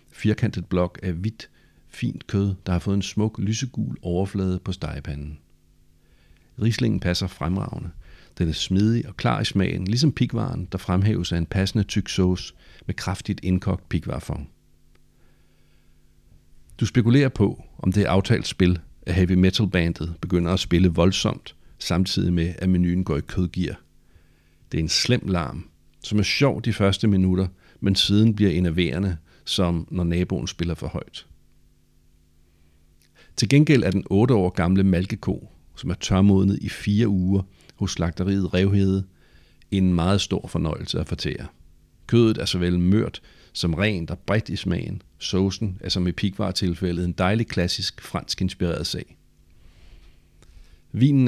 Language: Danish